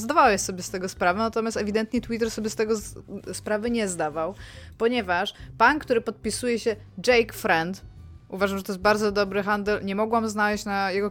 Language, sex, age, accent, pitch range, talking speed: Polish, female, 20-39, native, 180-225 Hz, 185 wpm